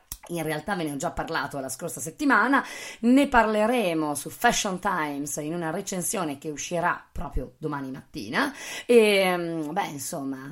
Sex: female